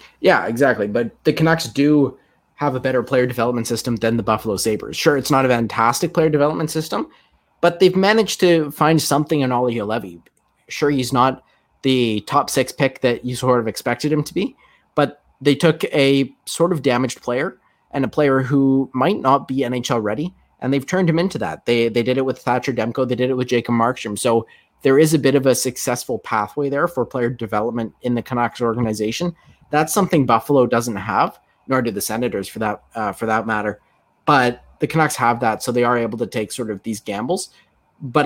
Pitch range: 115-145 Hz